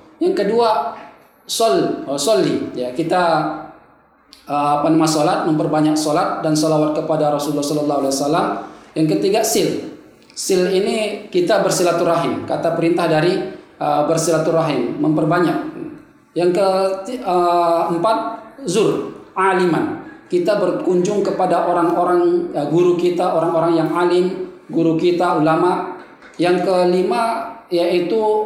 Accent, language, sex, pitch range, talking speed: native, Indonesian, male, 160-200 Hz, 105 wpm